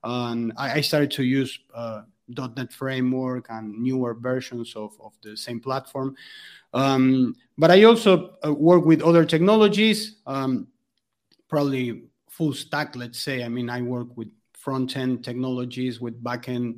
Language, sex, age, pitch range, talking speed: English, male, 30-49, 130-155 Hz, 135 wpm